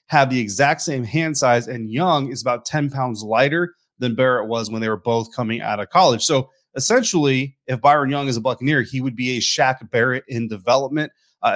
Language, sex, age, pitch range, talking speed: English, male, 30-49, 115-135 Hz, 215 wpm